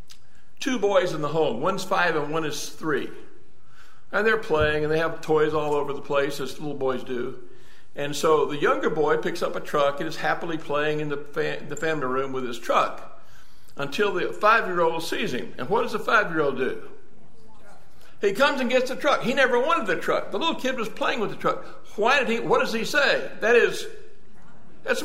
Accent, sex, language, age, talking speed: American, male, English, 60-79, 205 wpm